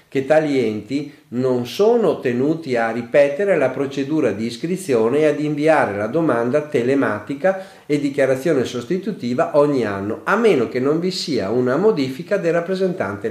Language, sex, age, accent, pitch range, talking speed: Italian, male, 50-69, native, 115-165 Hz, 150 wpm